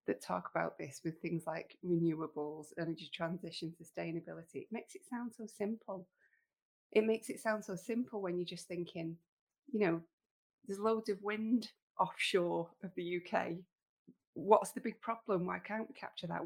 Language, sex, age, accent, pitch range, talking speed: English, female, 20-39, British, 170-215 Hz, 170 wpm